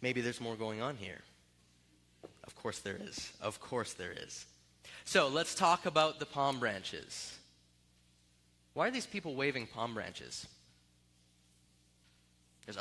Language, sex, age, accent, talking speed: English, male, 20-39, American, 135 wpm